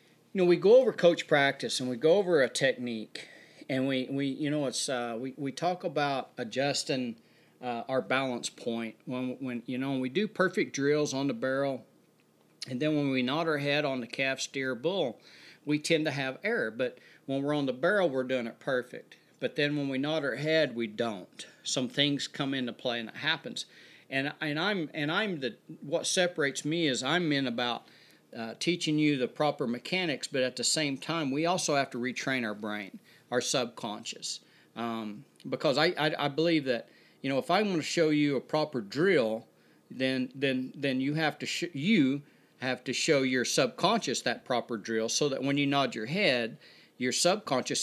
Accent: American